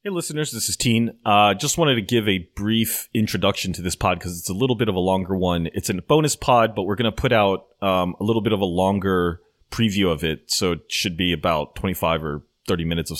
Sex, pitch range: male, 85-110 Hz